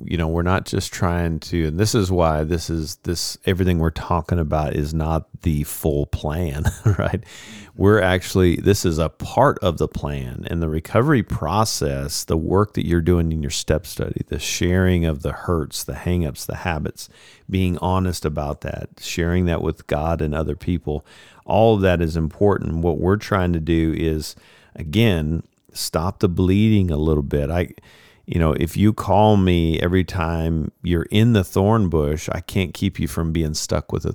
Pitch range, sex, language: 75-90 Hz, male, English